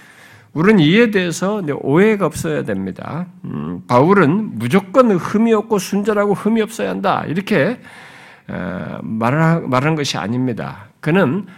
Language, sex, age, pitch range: Korean, male, 50-69, 165-245 Hz